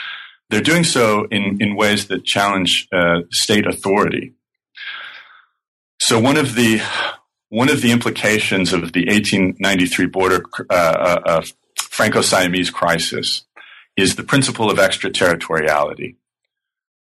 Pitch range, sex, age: 90-110 Hz, male, 40-59